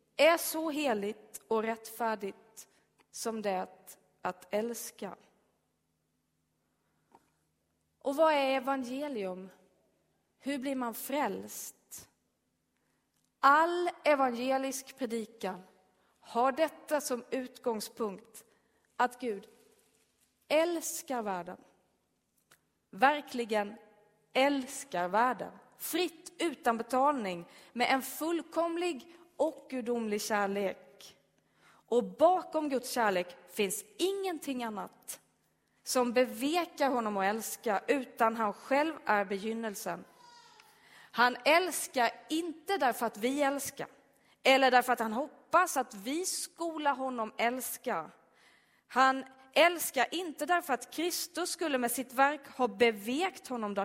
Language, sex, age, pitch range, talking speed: Swedish, female, 30-49, 210-295 Hz, 95 wpm